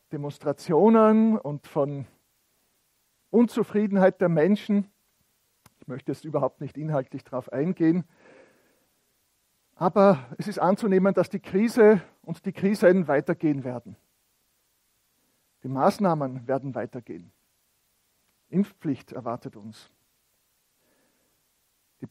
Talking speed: 90 wpm